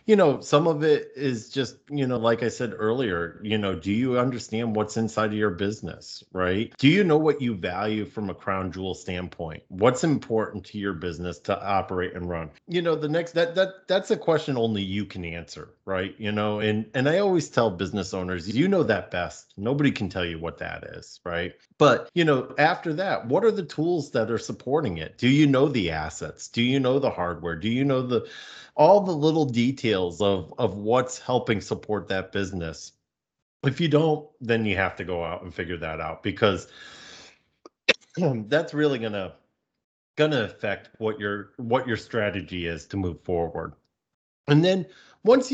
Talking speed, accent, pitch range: 195 wpm, American, 95-135 Hz